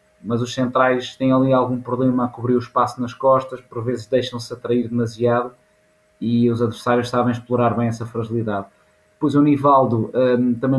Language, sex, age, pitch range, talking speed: Portuguese, male, 20-39, 120-135 Hz, 165 wpm